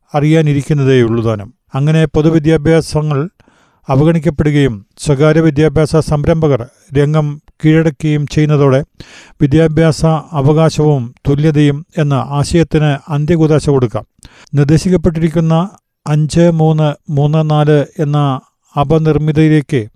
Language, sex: Malayalam, male